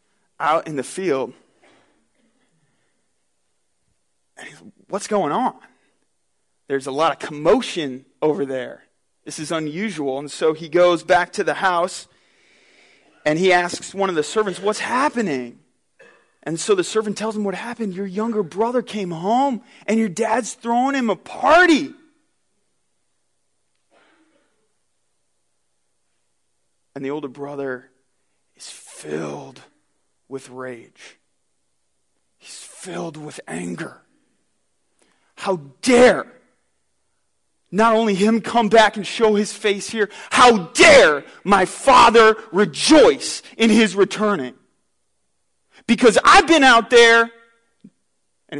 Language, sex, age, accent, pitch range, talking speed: English, male, 30-49, American, 140-225 Hz, 115 wpm